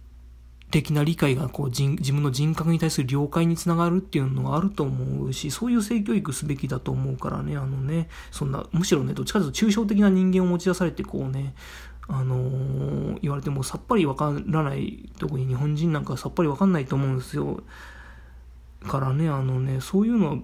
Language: Japanese